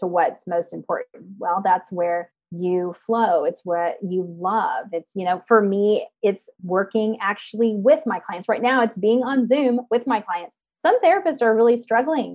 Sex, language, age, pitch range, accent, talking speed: female, English, 30-49, 185-225 Hz, American, 180 wpm